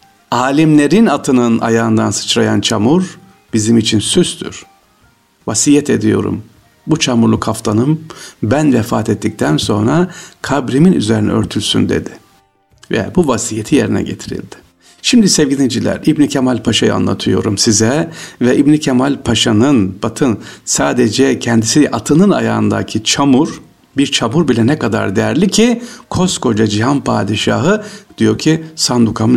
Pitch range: 110-160 Hz